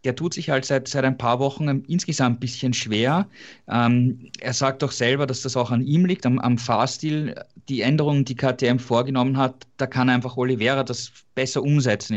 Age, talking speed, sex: 20-39, 195 wpm, male